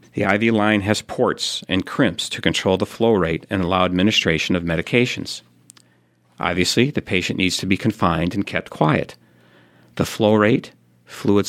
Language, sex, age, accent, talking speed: English, male, 50-69, American, 160 wpm